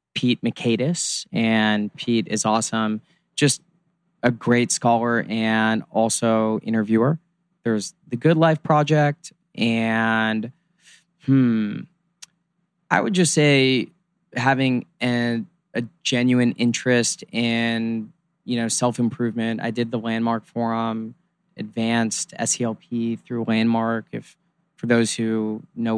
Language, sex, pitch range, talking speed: English, male, 115-155 Hz, 120 wpm